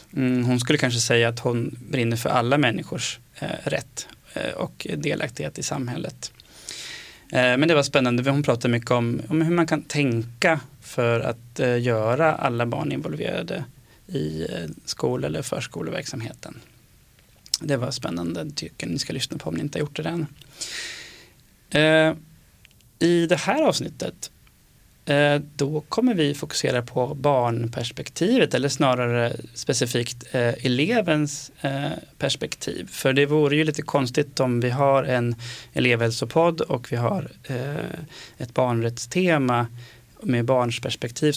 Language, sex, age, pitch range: Swedish, male, 20-39, 120-150 Hz